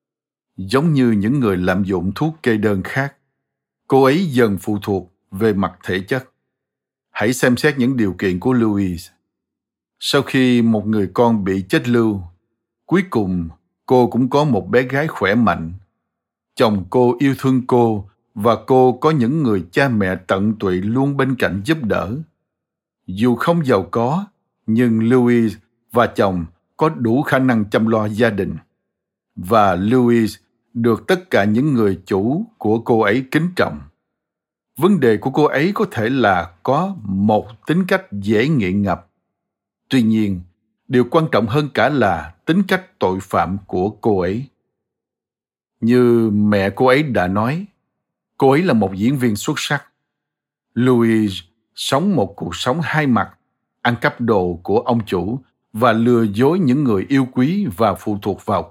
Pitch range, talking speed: 100-130 Hz, 165 wpm